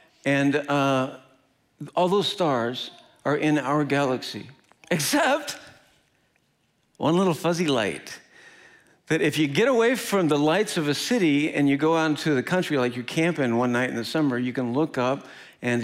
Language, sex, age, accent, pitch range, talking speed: English, male, 60-79, American, 125-155 Hz, 175 wpm